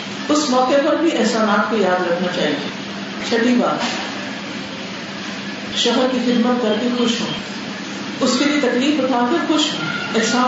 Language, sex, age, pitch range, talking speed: Urdu, female, 50-69, 225-275 Hz, 150 wpm